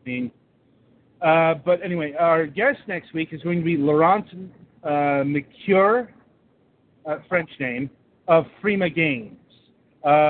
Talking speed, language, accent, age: 130 wpm, English, American, 40-59